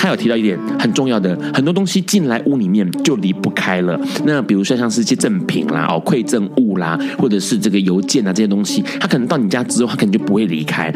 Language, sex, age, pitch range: Chinese, male, 30-49, 110-185 Hz